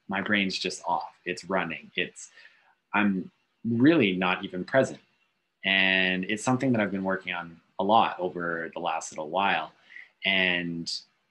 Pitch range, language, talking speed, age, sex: 90-110 Hz, English, 150 wpm, 20-39, male